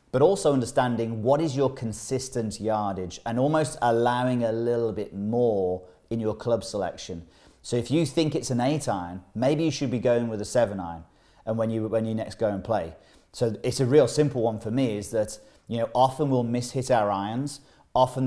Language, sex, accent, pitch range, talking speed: English, male, British, 110-125 Hz, 210 wpm